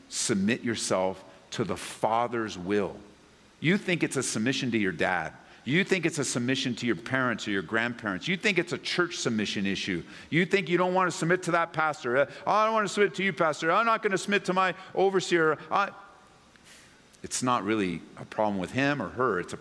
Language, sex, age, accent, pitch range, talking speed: English, male, 50-69, American, 115-180 Hz, 210 wpm